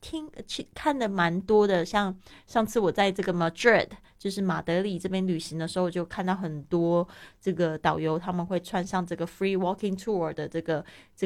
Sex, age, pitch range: female, 20-39, 165-190 Hz